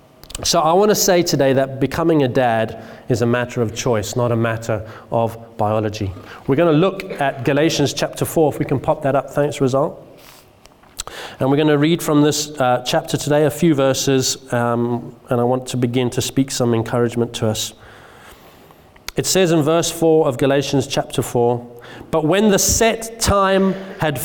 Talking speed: 180 wpm